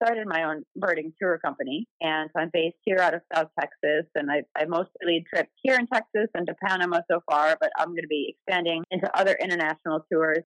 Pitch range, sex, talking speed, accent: 160-220 Hz, female, 220 wpm, American